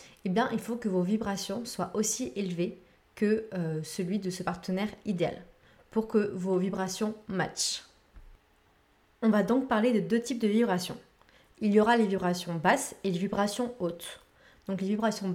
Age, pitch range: 20-39, 185-220 Hz